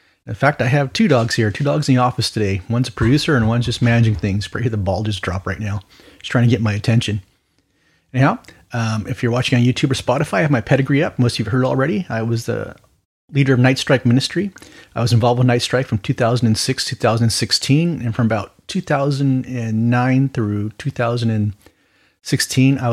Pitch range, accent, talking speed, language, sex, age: 115-135 Hz, American, 205 wpm, English, male, 30-49